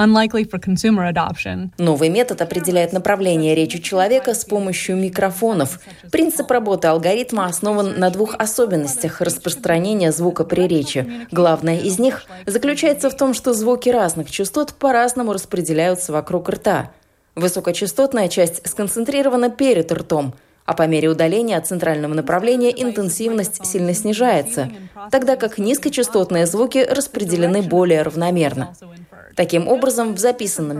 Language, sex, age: Russian, female, 20-39